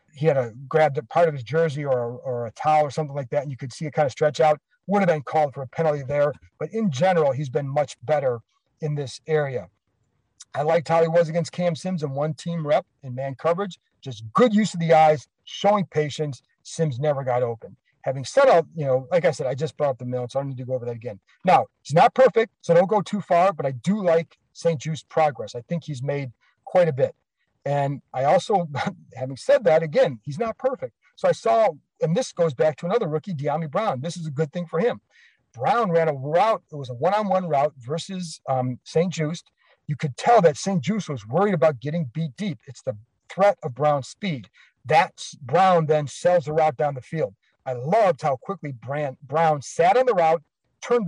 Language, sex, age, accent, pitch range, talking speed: English, male, 40-59, American, 140-175 Hz, 235 wpm